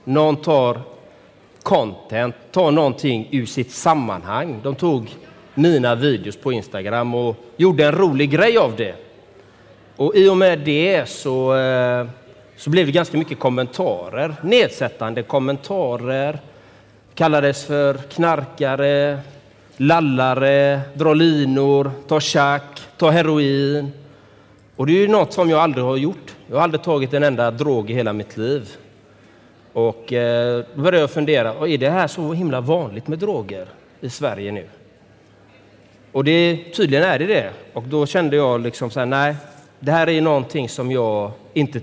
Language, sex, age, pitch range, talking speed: Swedish, male, 30-49, 115-150 Hz, 150 wpm